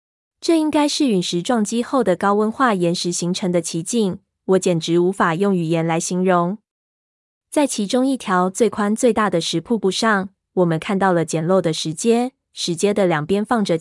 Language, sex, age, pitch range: Chinese, female, 20-39, 175-210 Hz